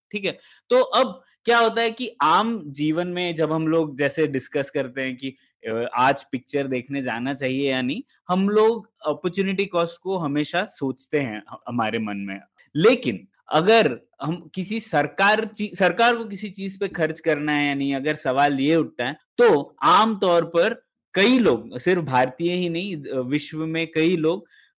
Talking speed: 170 wpm